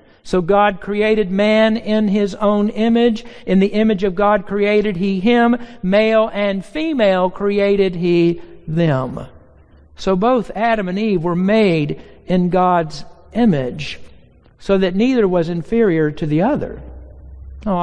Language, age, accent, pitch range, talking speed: English, 60-79, American, 175-225 Hz, 140 wpm